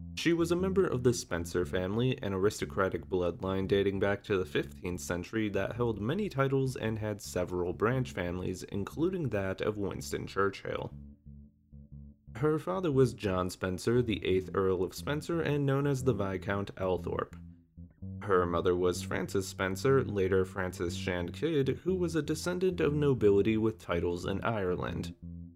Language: English